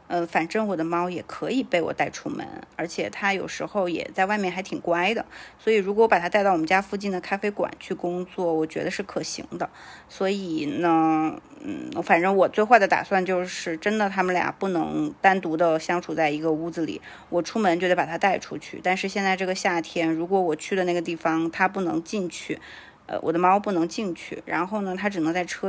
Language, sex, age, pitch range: Chinese, female, 20-39, 170-205 Hz